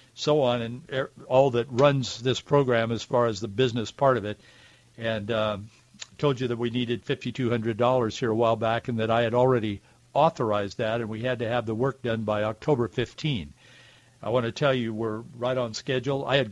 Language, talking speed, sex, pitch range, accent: English, 205 wpm, male, 115-140 Hz, American